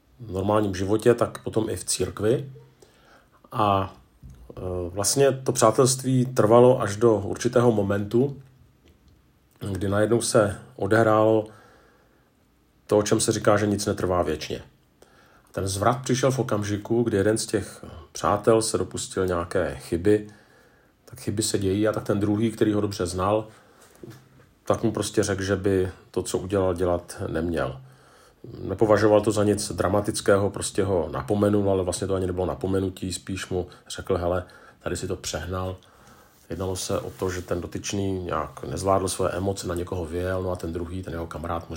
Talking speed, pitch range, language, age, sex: 160 wpm, 90-110 Hz, Czech, 40-59, male